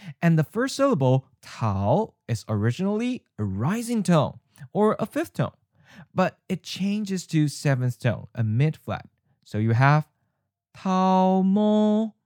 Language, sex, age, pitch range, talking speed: English, male, 20-39, 125-185 Hz, 120 wpm